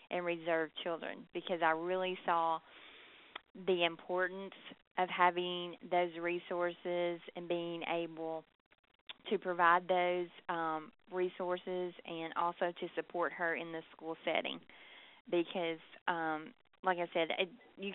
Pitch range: 165-185 Hz